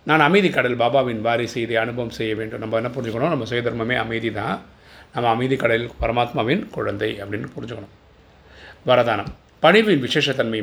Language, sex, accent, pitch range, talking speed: Tamil, male, native, 110-125 Hz, 145 wpm